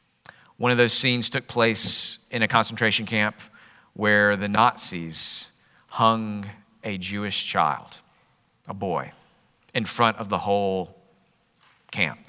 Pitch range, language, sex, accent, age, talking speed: 100-125 Hz, English, male, American, 40-59, 120 wpm